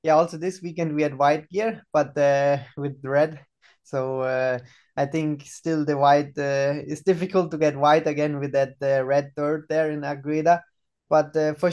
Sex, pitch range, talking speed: male, 145-175 Hz, 190 wpm